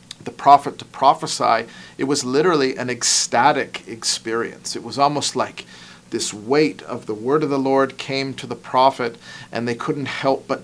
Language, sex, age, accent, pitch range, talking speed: English, male, 40-59, American, 120-150 Hz, 175 wpm